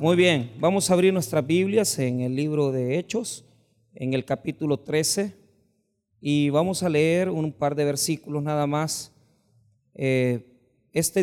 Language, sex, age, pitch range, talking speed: Spanish, male, 40-59, 130-170 Hz, 145 wpm